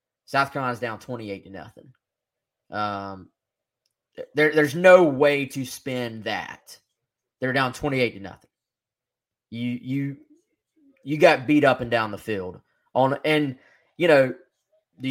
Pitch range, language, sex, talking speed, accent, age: 115-145 Hz, English, male, 135 wpm, American, 20-39